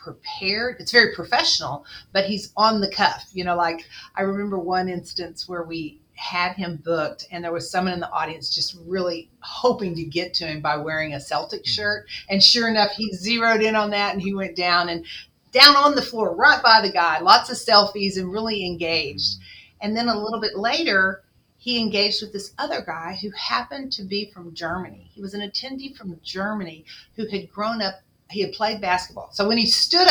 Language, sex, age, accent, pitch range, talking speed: English, female, 40-59, American, 170-215 Hz, 205 wpm